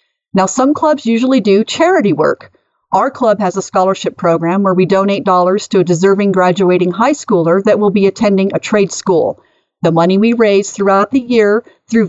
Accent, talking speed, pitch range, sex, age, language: American, 190 wpm, 190-245 Hz, female, 50-69, English